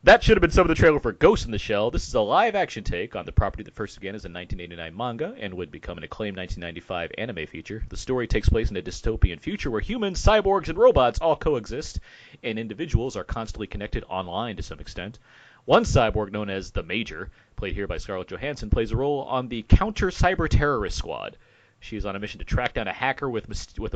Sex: male